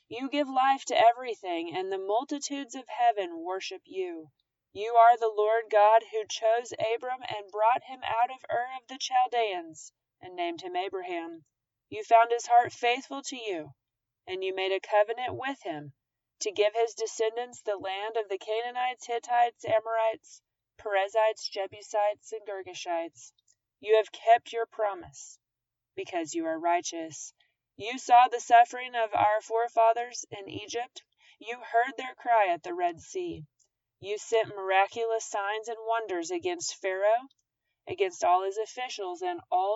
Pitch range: 185-255 Hz